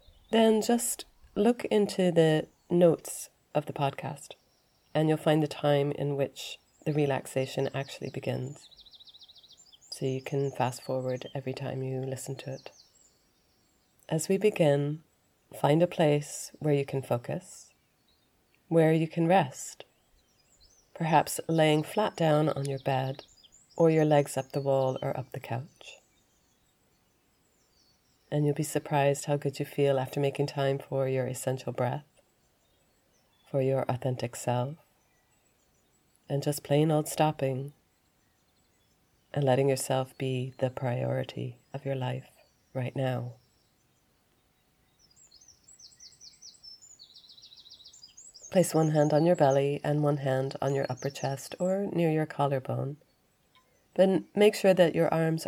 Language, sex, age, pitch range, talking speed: English, female, 30-49, 135-155 Hz, 130 wpm